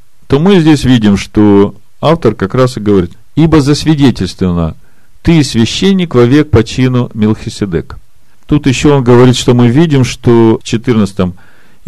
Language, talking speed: Russian, 145 wpm